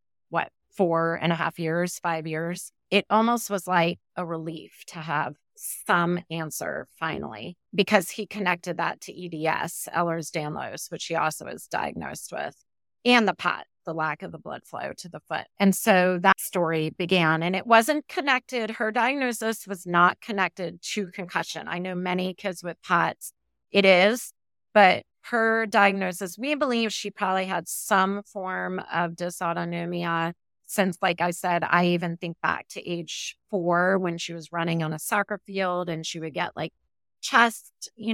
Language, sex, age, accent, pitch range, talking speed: English, female, 30-49, American, 170-200 Hz, 165 wpm